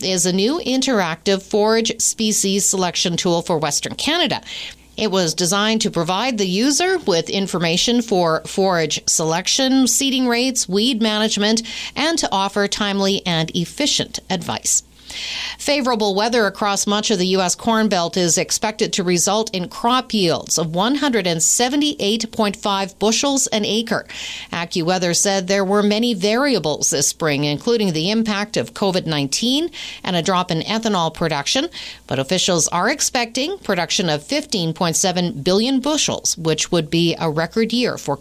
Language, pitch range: English, 180-230 Hz